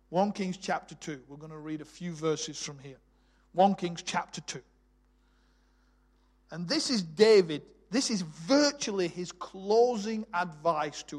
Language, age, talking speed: English, 40-59, 150 wpm